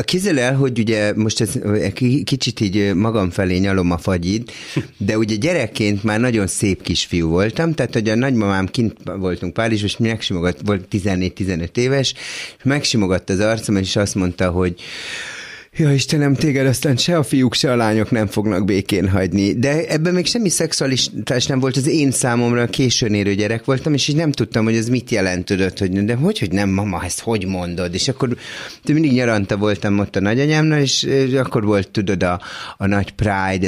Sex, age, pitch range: male, 30-49, 100-140 Hz